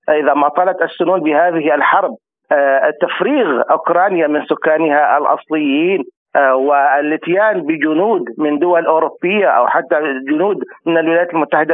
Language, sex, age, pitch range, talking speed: Arabic, male, 40-59, 150-210 Hz, 125 wpm